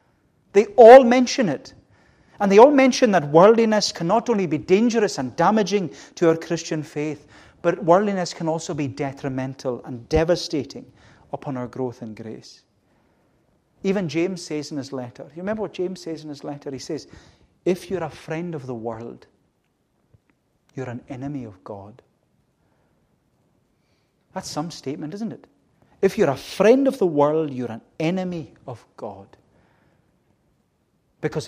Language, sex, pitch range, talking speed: English, male, 125-170 Hz, 155 wpm